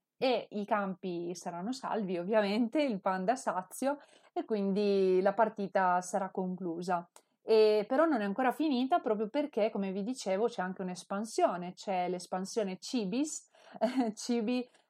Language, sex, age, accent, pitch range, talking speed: Italian, female, 30-49, native, 185-220 Hz, 135 wpm